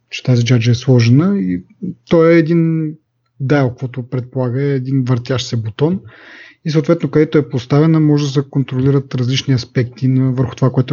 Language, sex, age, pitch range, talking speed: Bulgarian, male, 30-49, 125-150 Hz, 170 wpm